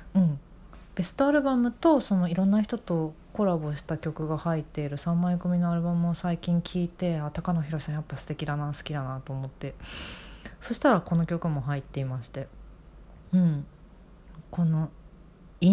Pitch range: 150-185 Hz